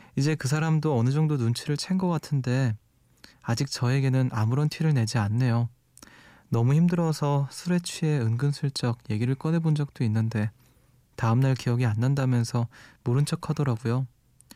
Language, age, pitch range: Korean, 20-39, 120-140 Hz